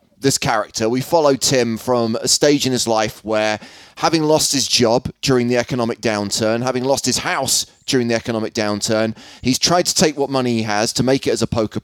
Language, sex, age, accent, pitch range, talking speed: English, male, 30-49, British, 115-150 Hz, 215 wpm